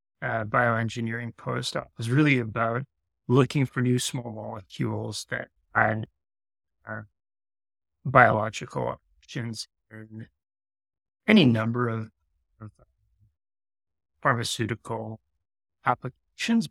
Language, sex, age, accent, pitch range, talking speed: English, male, 30-49, American, 100-120 Hz, 85 wpm